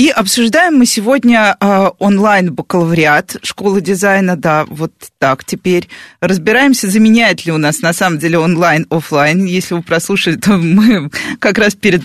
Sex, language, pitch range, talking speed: female, Russian, 160-215 Hz, 140 wpm